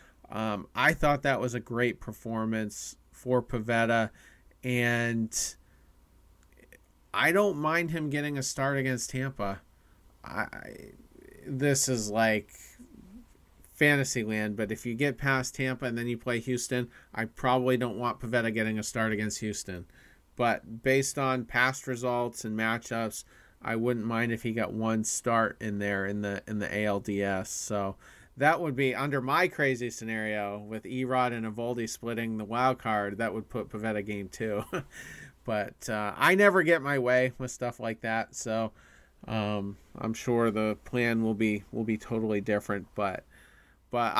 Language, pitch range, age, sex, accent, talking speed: English, 105-125 Hz, 40-59, male, American, 155 wpm